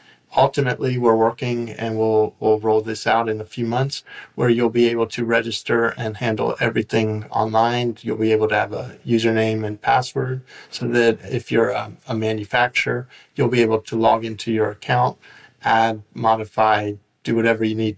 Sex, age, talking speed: male, 40-59, 175 wpm